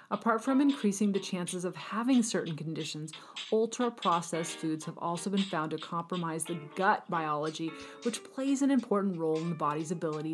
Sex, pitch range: female, 160-210 Hz